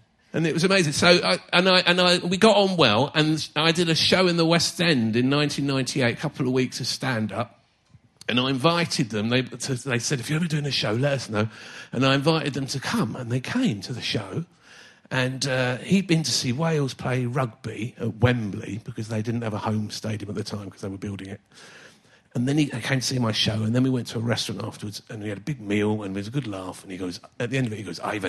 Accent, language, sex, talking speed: British, English, male, 265 wpm